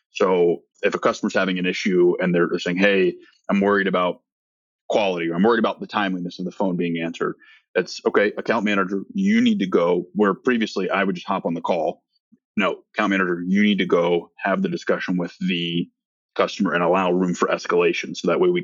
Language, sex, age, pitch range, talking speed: English, male, 30-49, 85-105 Hz, 210 wpm